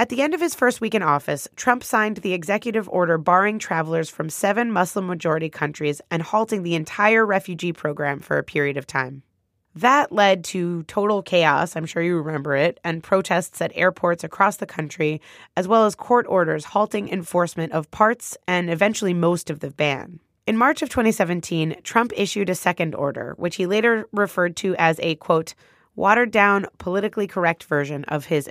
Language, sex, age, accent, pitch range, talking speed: English, female, 20-39, American, 165-210 Hz, 180 wpm